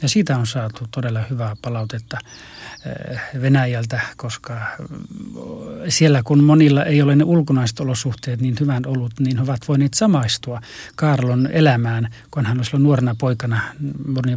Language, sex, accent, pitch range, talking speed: Finnish, male, native, 120-145 Hz, 140 wpm